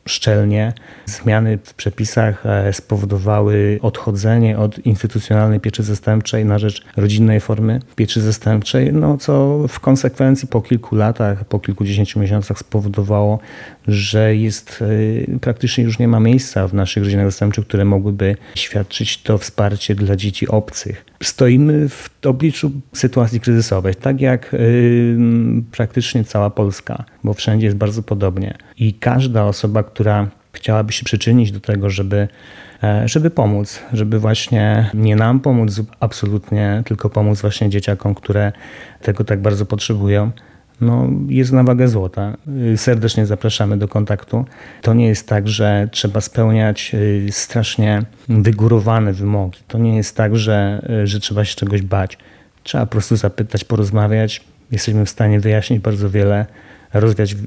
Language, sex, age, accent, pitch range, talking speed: Polish, male, 40-59, native, 105-115 Hz, 135 wpm